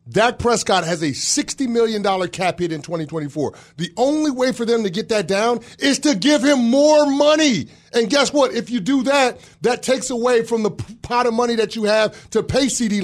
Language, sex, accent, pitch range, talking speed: English, male, American, 170-230 Hz, 210 wpm